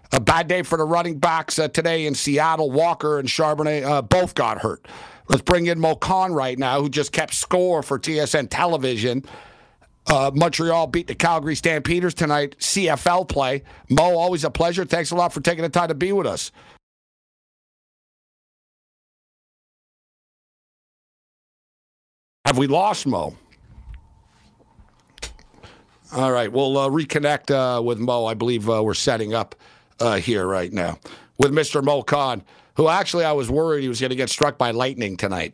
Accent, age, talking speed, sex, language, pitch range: American, 60-79, 160 wpm, male, English, 140-175 Hz